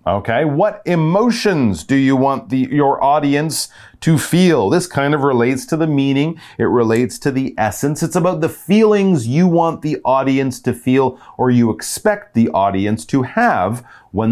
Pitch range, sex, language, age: 100-160 Hz, male, Chinese, 30-49